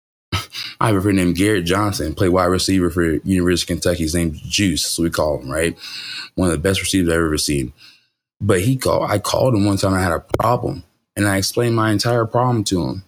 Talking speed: 235 wpm